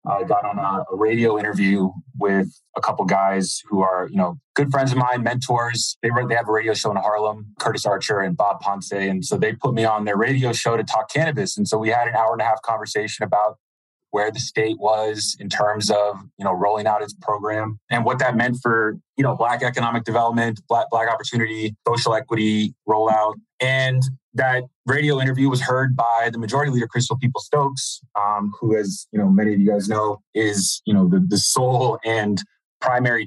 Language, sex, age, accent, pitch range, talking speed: English, male, 20-39, American, 105-125 Hz, 205 wpm